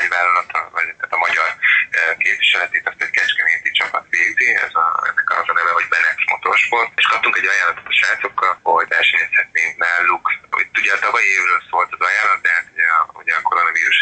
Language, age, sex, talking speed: Hungarian, 30-49, male, 180 wpm